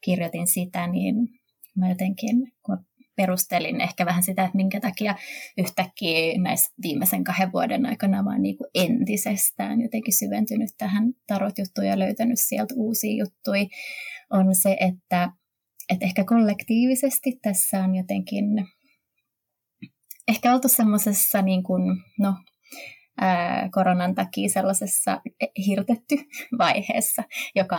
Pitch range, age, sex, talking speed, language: 185-230 Hz, 20-39, female, 110 wpm, Finnish